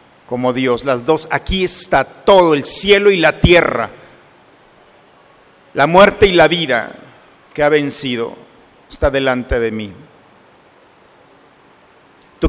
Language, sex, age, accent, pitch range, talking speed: Spanish, male, 50-69, Mexican, 135-185 Hz, 120 wpm